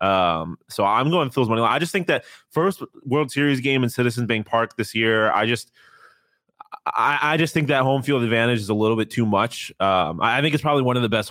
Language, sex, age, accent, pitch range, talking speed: English, male, 20-39, American, 95-115 Hz, 255 wpm